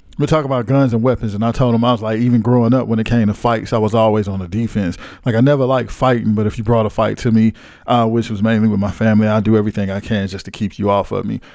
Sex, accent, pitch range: male, American, 105-125 Hz